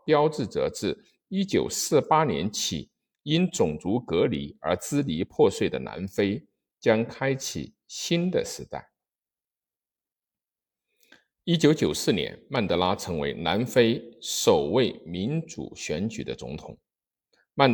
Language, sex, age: Chinese, male, 50-69